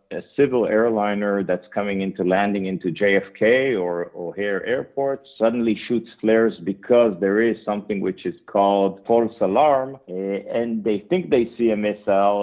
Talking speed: 150 wpm